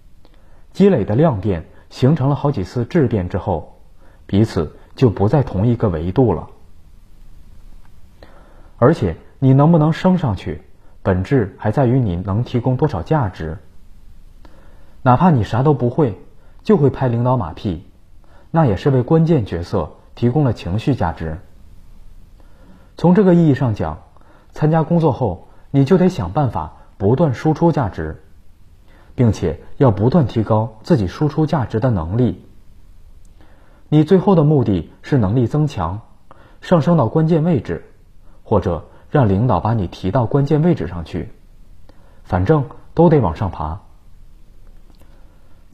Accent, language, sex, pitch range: native, Chinese, male, 90-145 Hz